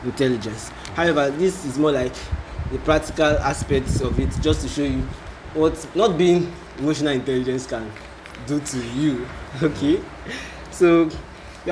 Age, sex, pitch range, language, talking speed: 20-39, male, 120-160 Hz, English, 140 wpm